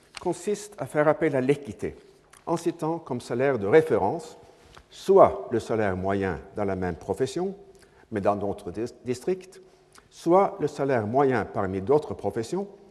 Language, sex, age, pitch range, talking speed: French, male, 60-79, 105-165 Hz, 145 wpm